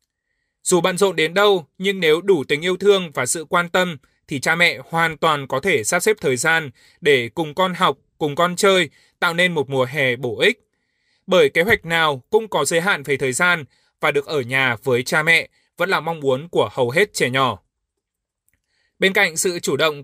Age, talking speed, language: 20-39, 215 wpm, Vietnamese